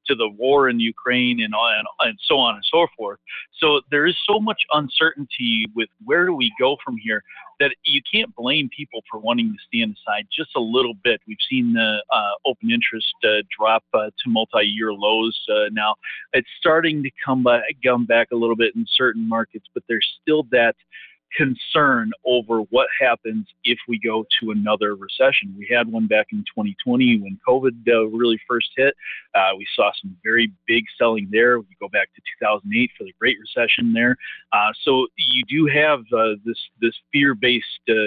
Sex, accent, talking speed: male, American, 190 wpm